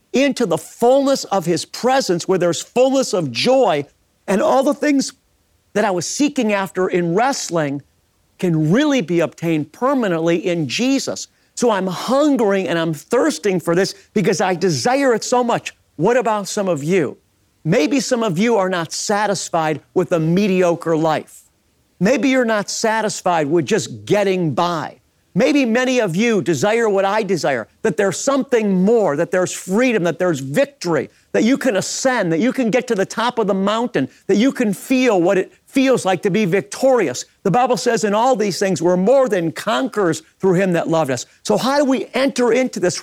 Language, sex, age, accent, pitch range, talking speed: English, male, 50-69, American, 170-250 Hz, 185 wpm